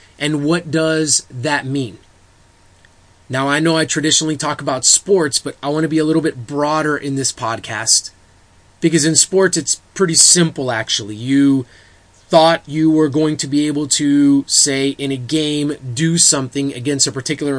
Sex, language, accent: male, English, American